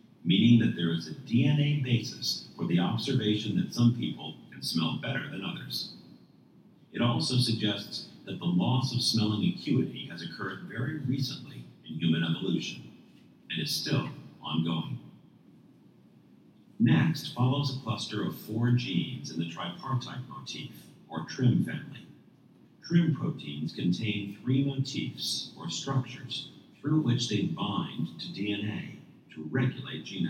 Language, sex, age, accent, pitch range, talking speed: English, male, 50-69, American, 85-130 Hz, 135 wpm